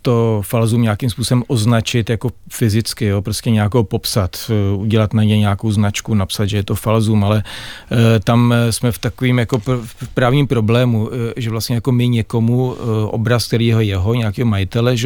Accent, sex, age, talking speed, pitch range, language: native, male, 40-59, 150 wpm, 110-120 Hz, Czech